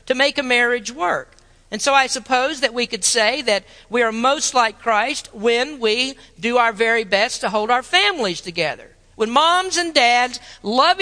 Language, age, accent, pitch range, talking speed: English, 50-69, American, 205-275 Hz, 190 wpm